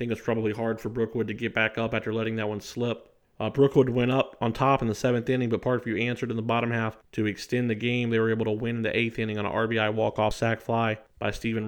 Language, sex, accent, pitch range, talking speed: English, male, American, 110-125 Hz, 290 wpm